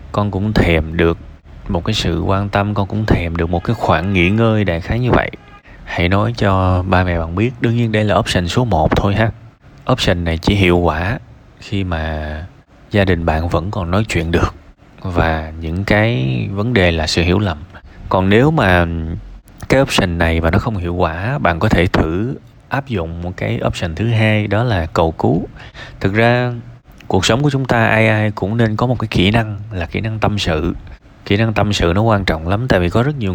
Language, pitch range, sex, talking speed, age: Vietnamese, 85-110 Hz, male, 220 wpm, 20-39